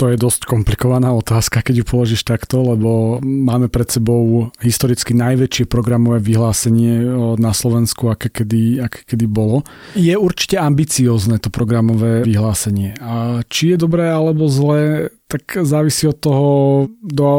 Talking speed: 140 wpm